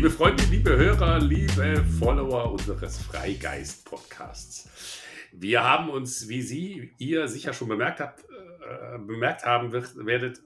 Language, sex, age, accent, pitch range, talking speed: German, male, 50-69, German, 100-135 Hz, 130 wpm